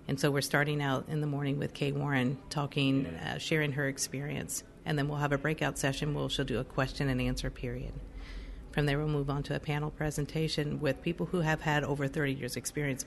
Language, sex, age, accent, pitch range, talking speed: English, female, 50-69, American, 130-150 Hz, 225 wpm